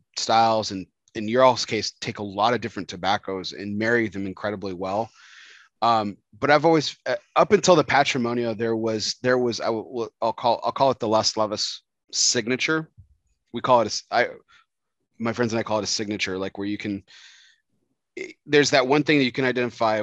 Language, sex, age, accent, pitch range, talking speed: English, male, 30-49, American, 105-125 Hz, 200 wpm